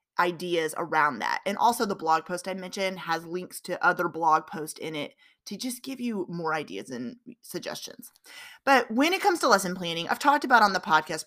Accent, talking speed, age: American, 210 wpm, 30-49